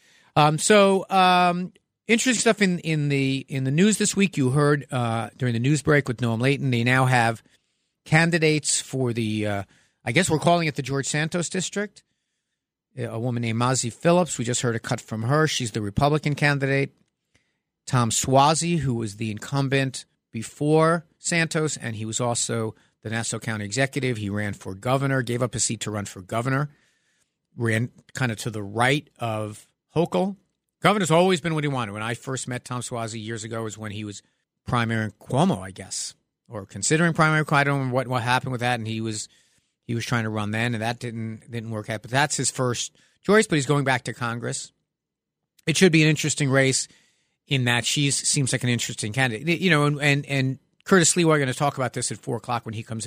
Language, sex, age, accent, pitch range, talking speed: English, male, 50-69, American, 115-155 Hz, 210 wpm